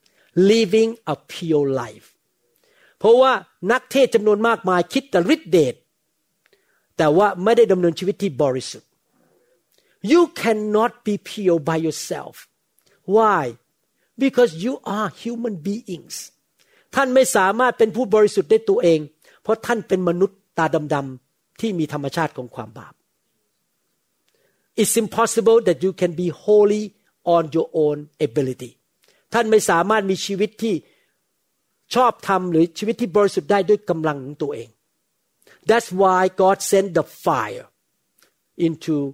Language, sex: Thai, male